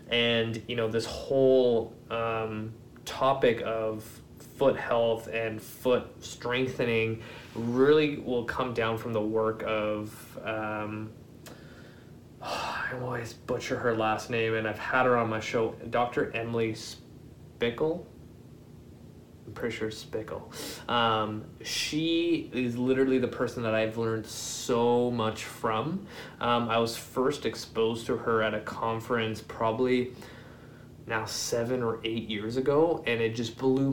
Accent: American